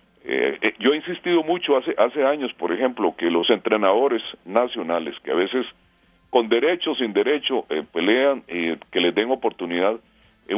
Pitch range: 105-155 Hz